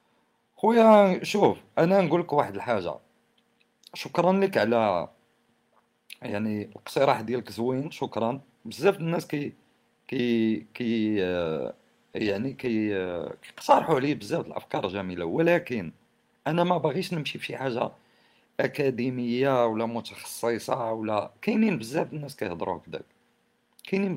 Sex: male